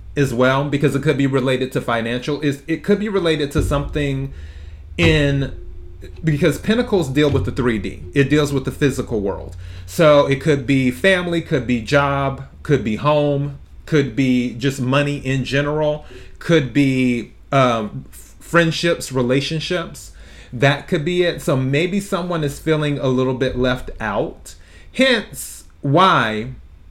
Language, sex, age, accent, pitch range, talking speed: English, male, 30-49, American, 125-160 Hz, 150 wpm